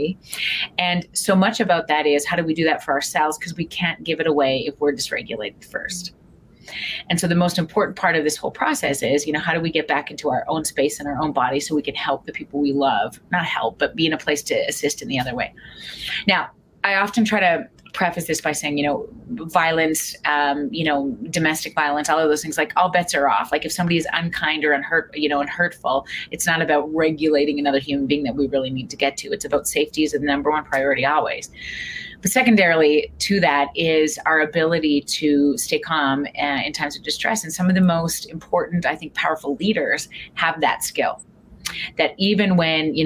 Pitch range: 145-175 Hz